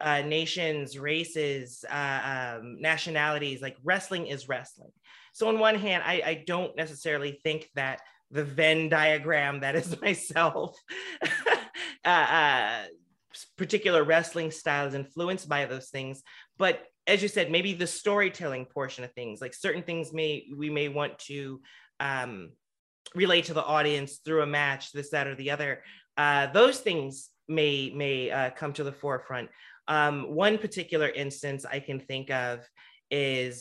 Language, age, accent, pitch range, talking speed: English, 30-49, American, 135-165 Hz, 155 wpm